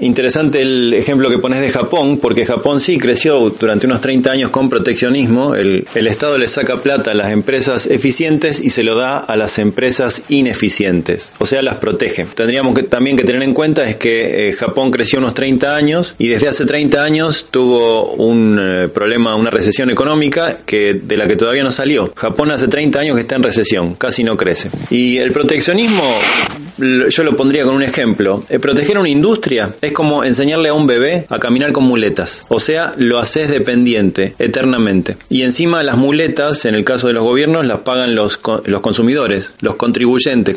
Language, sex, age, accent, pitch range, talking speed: Spanish, male, 20-39, Argentinian, 115-145 Hz, 195 wpm